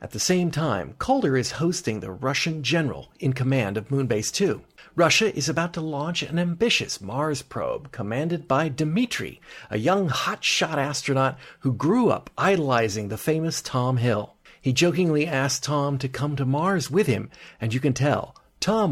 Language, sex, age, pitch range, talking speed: English, male, 40-59, 130-170 Hz, 170 wpm